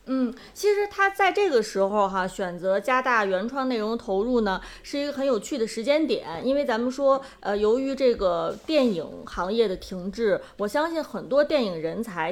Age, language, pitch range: 20-39, Chinese, 195-275 Hz